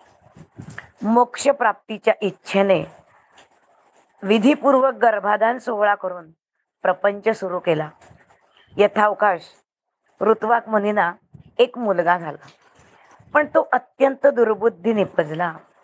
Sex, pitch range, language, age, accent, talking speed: female, 195-240 Hz, Marathi, 20-39, native, 40 wpm